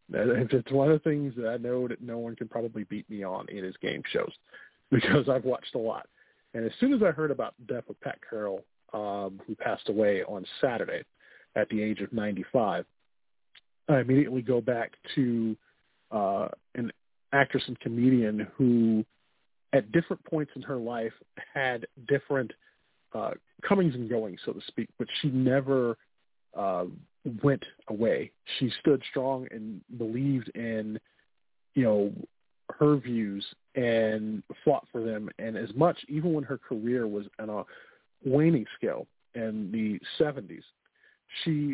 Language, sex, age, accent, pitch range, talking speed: English, male, 40-59, American, 110-140 Hz, 155 wpm